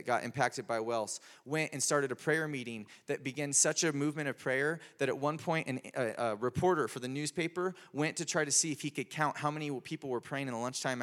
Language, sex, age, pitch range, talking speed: English, male, 20-39, 120-155 Hz, 245 wpm